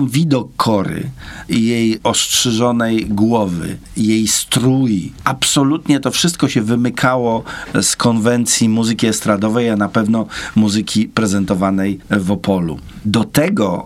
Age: 50-69